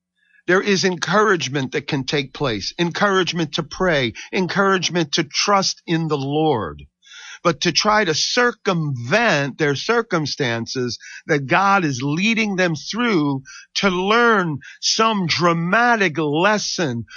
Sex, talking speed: male, 120 wpm